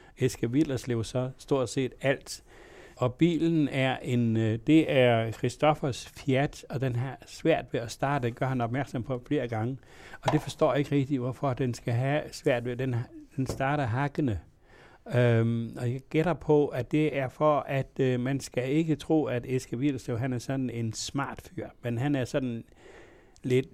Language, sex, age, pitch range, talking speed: Danish, male, 60-79, 120-150 Hz, 180 wpm